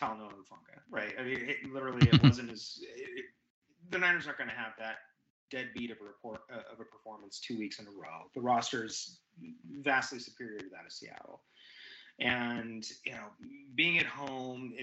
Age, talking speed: 30-49, 170 wpm